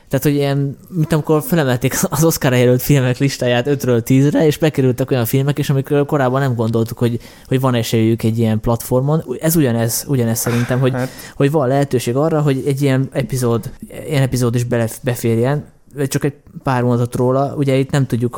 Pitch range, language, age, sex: 115-135 Hz, Hungarian, 20-39, male